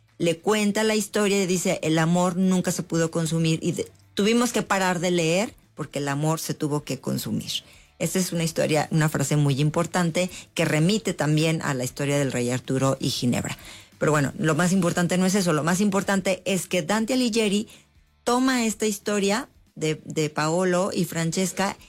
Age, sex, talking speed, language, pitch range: 40-59, female, 185 wpm, English, 155-195 Hz